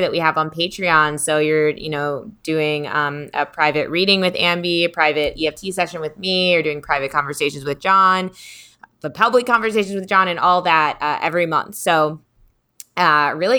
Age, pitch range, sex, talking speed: 20-39, 150-175 Hz, female, 185 wpm